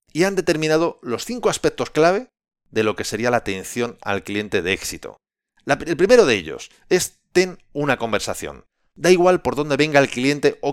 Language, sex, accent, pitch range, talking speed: Spanish, male, Spanish, 120-155 Hz, 185 wpm